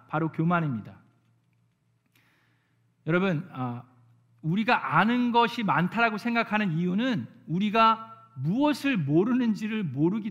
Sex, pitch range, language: male, 130-210 Hz, Korean